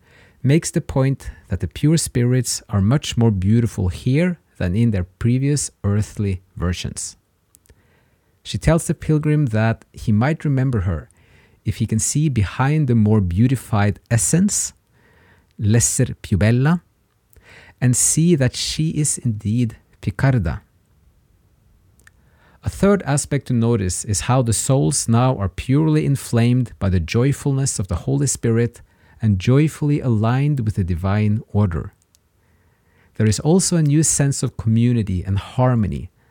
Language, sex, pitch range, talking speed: English, male, 95-130 Hz, 135 wpm